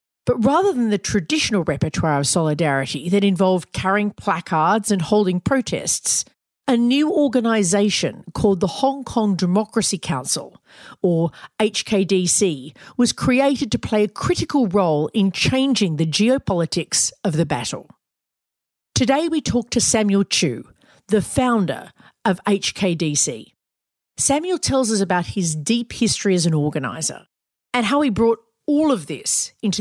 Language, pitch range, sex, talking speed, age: English, 170-230 Hz, female, 135 wpm, 40-59